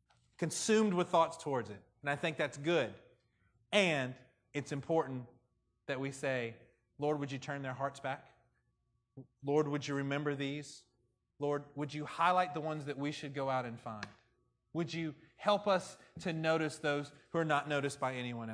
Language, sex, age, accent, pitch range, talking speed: English, male, 30-49, American, 125-165 Hz, 175 wpm